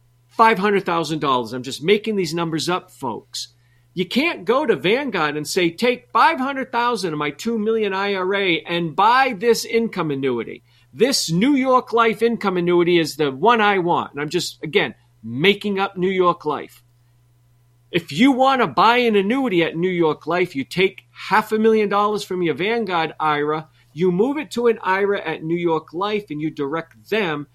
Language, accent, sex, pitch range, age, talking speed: English, American, male, 150-220 Hz, 50-69, 180 wpm